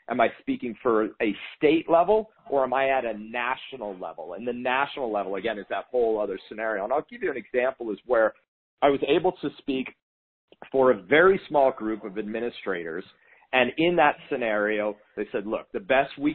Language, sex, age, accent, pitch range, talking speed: English, male, 40-59, American, 110-170 Hz, 200 wpm